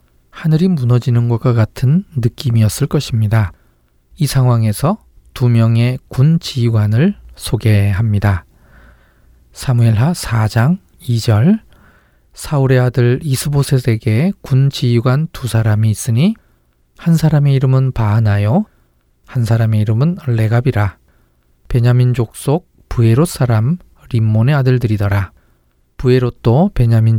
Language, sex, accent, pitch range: Korean, male, native, 105-140 Hz